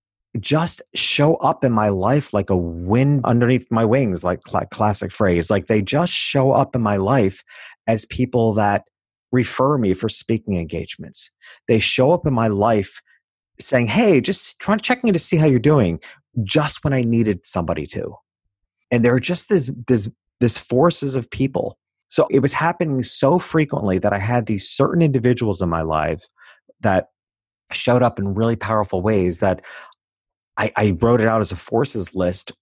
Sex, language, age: male, English, 30-49